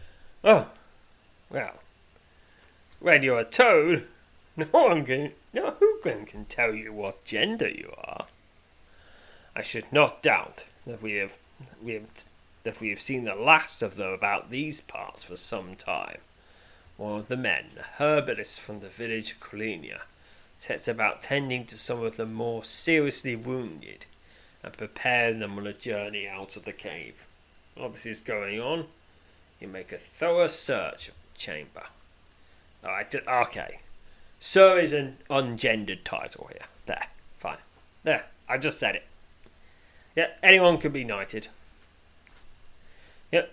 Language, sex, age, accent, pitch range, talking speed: English, male, 30-49, British, 80-120 Hz, 150 wpm